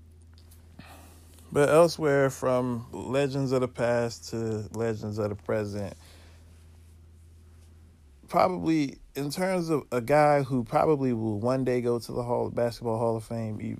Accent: American